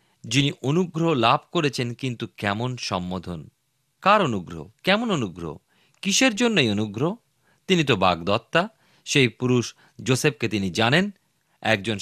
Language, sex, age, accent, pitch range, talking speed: Bengali, male, 40-59, native, 105-150 Hz, 115 wpm